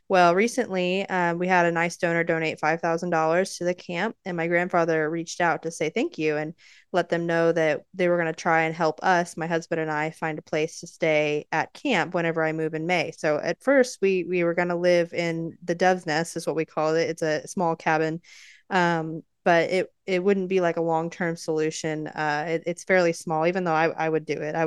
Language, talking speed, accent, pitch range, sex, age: English, 235 wpm, American, 165-190 Hz, female, 20-39